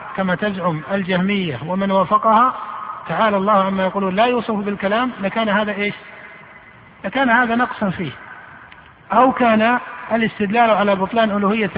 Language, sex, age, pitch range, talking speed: Arabic, male, 50-69, 180-215 Hz, 125 wpm